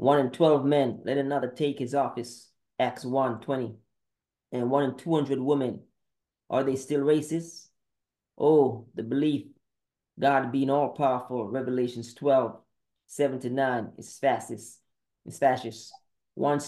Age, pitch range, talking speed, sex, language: 20-39, 125-145 Hz, 125 wpm, male, English